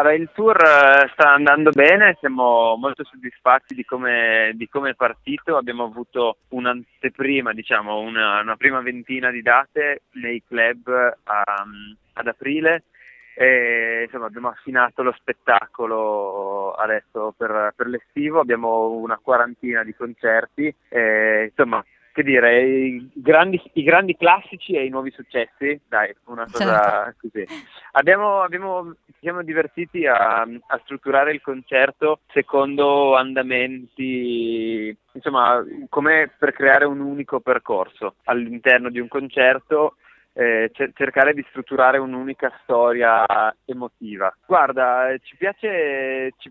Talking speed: 125 wpm